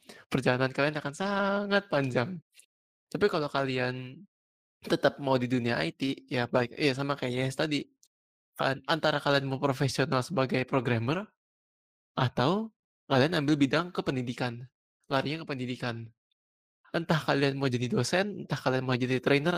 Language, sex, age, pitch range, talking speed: Indonesian, male, 20-39, 130-155 Hz, 135 wpm